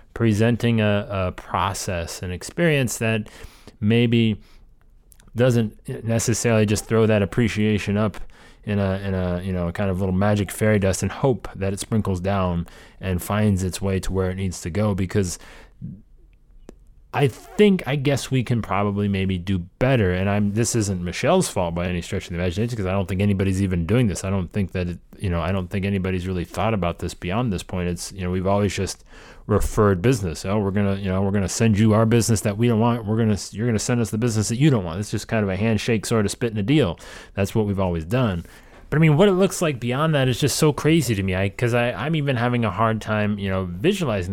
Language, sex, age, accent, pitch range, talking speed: English, male, 30-49, American, 95-120 Hz, 235 wpm